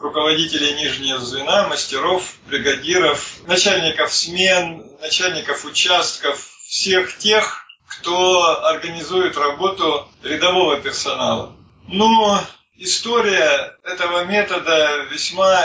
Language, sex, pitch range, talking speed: Russian, male, 150-190 Hz, 80 wpm